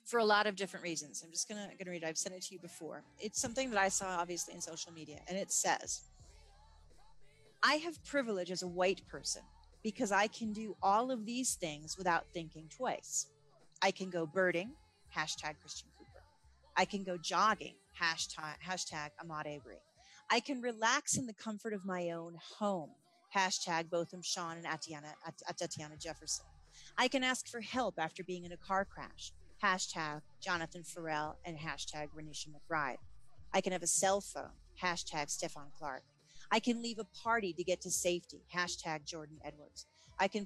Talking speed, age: 180 wpm, 30-49